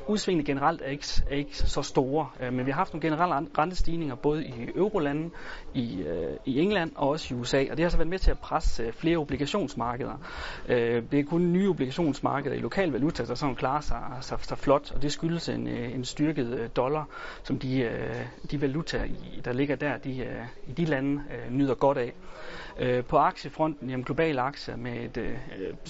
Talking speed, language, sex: 200 wpm, Danish, male